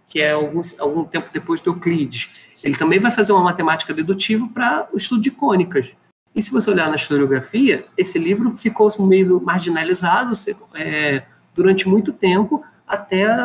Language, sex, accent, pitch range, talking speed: Portuguese, male, Brazilian, 155-205 Hz, 160 wpm